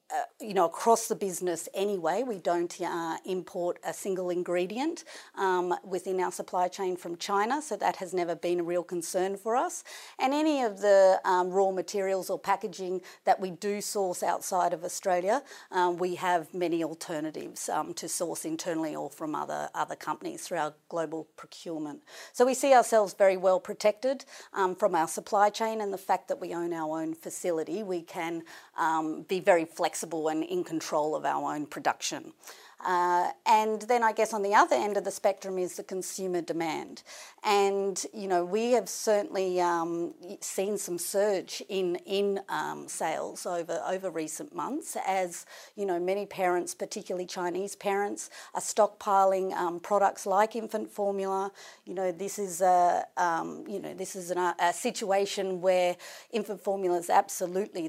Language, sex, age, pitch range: English, female, 40-59, 175-205 Hz